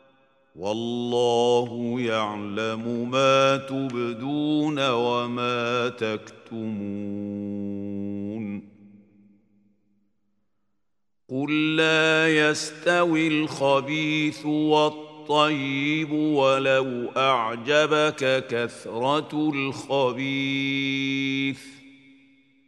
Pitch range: 115-150 Hz